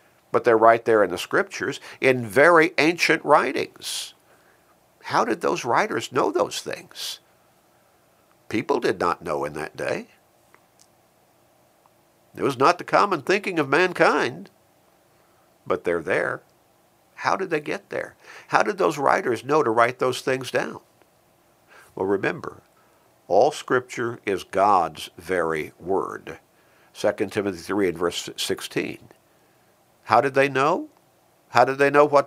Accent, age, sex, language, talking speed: American, 50-69, male, English, 140 wpm